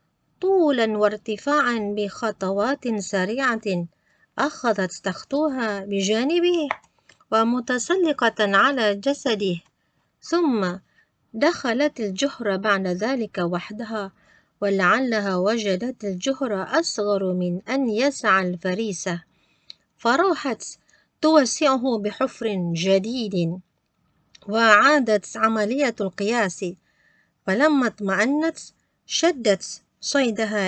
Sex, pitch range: female, 190-265 Hz